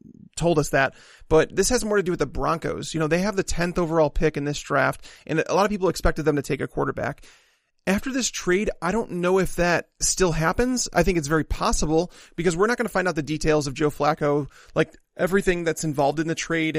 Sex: male